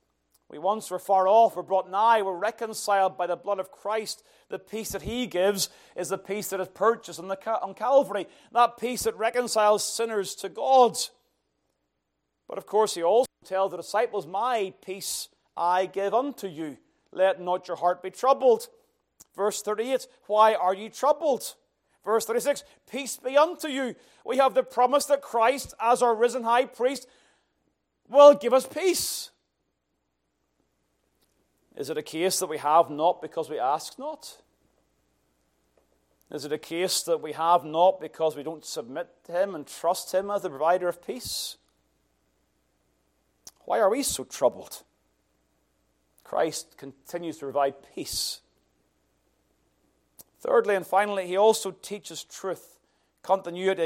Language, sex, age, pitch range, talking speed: English, male, 30-49, 155-225 Hz, 150 wpm